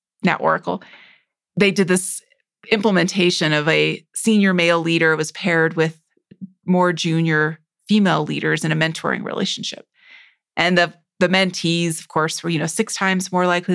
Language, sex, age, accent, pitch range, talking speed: English, female, 30-49, American, 170-220 Hz, 155 wpm